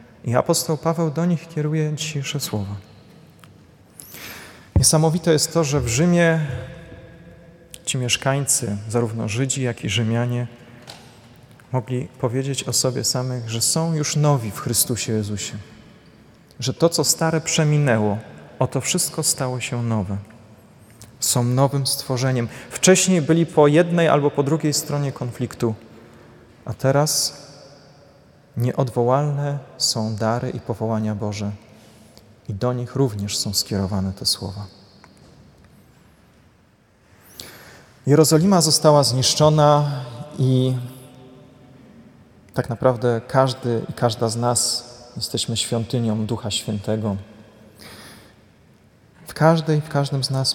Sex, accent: male, native